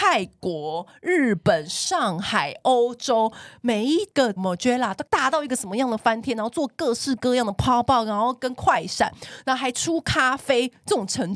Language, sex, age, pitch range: Chinese, female, 30-49, 175-260 Hz